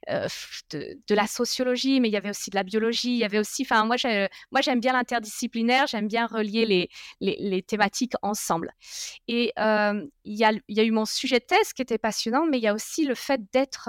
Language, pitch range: French, 205-255 Hz